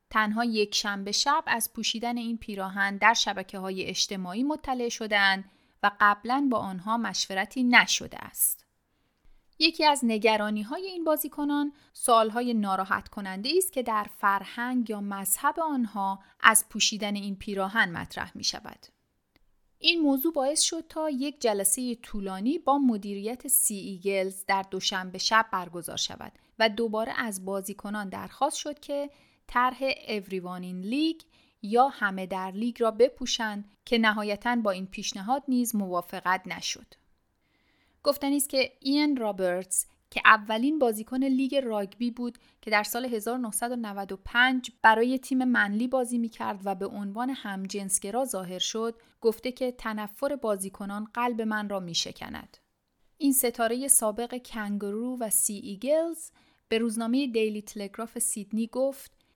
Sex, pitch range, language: female, 205-255 Hz, Persian